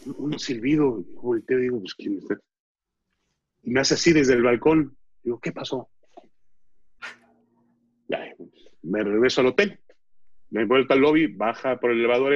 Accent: Mexican